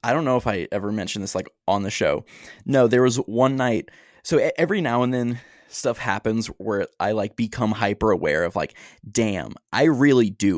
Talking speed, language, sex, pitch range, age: 205 wpm, English, male, 110-160 Hz, 20-39